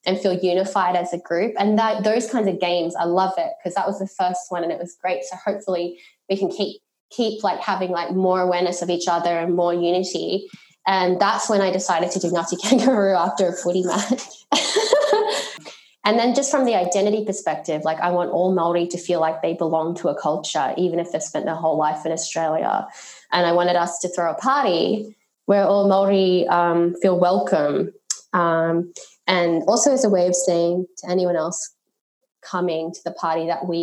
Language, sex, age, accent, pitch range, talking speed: English, female, 20-39, Australian, 170-195 Hz, 205 wpm